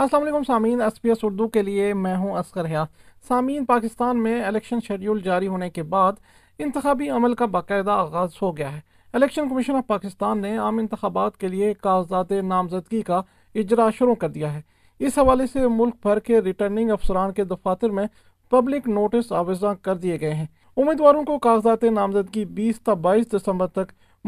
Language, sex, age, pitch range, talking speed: Urdu, male, 40-59, 190-235 Hz, 175 wpm